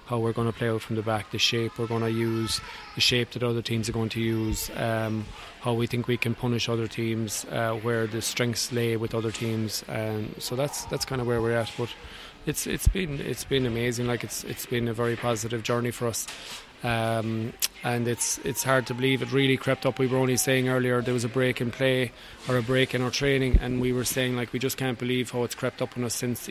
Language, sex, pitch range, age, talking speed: English, male, 120-130 Hz, 20-39, 250 wpm